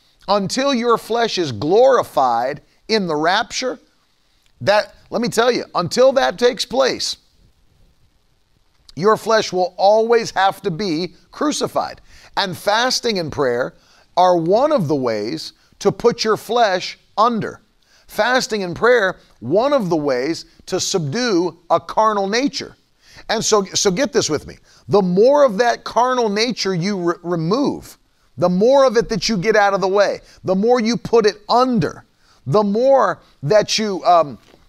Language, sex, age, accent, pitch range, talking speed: English, male, 50-69, American, 175-225 Hz, 150 wpm